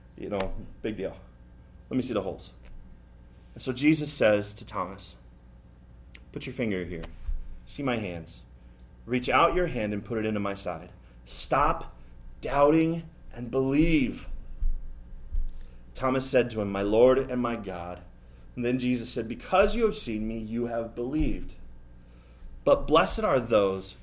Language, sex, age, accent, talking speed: English, male, 30-49, American, 150 wpm